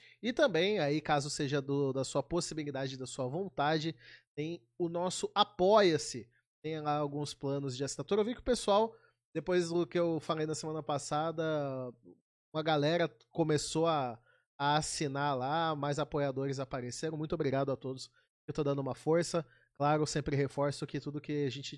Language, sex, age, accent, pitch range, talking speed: Portuguese, male, 30-49, Brazilian, 140-175 Hz, 170 wpm